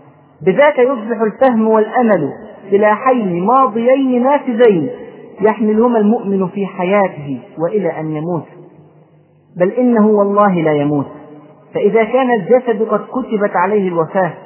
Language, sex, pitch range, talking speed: Arabic, male, 160-220 Hz, 110 wpm